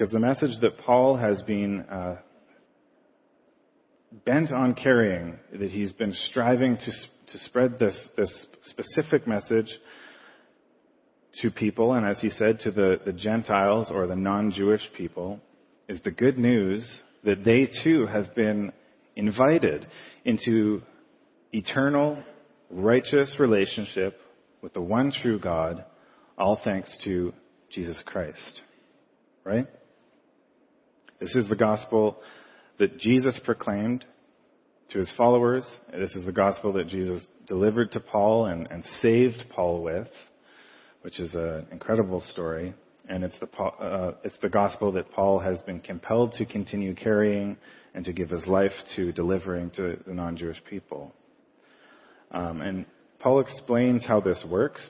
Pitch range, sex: 95-120 Hz, male